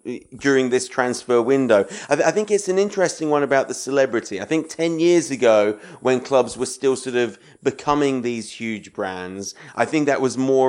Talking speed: 190 wpm